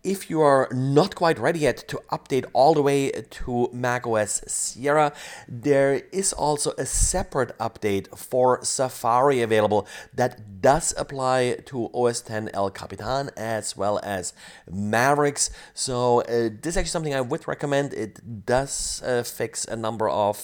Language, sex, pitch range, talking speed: English, male, 105-135 Hz, 155 wpm